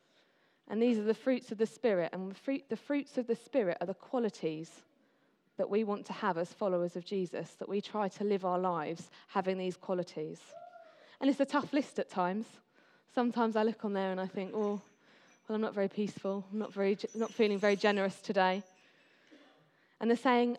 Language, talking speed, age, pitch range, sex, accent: English, 195 wpm, 20-39, 185-230 Hz, female, British